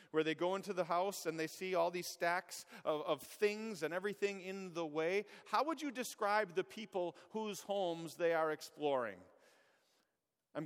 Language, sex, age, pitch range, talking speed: English, male, 40-59, 150-200 Hz, 180 wpm